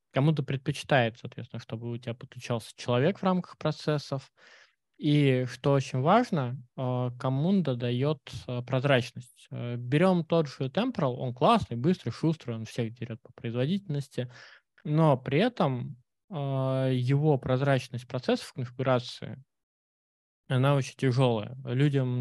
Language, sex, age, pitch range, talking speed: Russian, male, 20-39, 120-150 Hz, 115 wpm